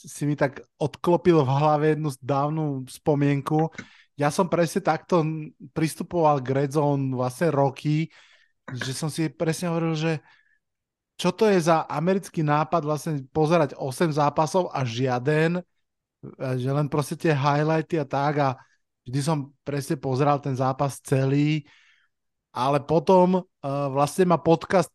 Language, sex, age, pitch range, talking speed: Slovak, male, 20-39, 140-165 Hz, 135 wpm